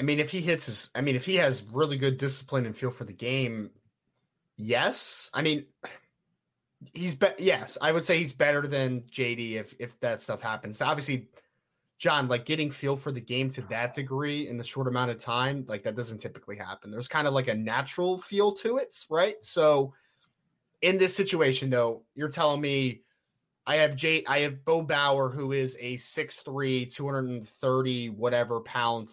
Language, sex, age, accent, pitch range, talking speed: English, male, 30-49, American, 125-150 Hz, 185 wpm